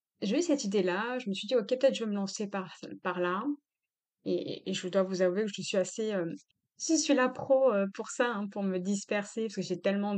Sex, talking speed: female, 265 wpm